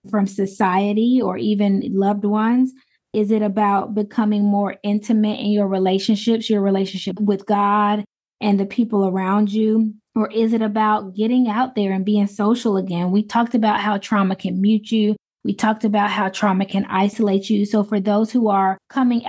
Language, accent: English, American